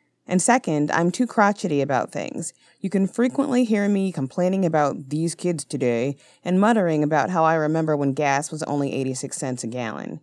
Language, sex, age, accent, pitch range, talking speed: English, female, 30-49, American, 165-240 Hz, 180 wpm